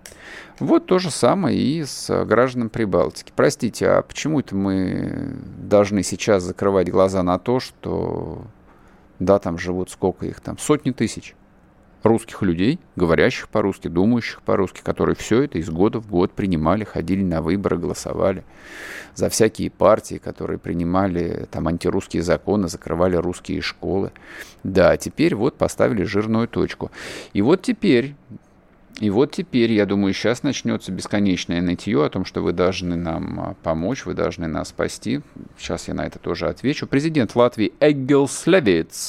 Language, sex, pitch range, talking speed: Russian, male, 90-125 Hz, 145 wpm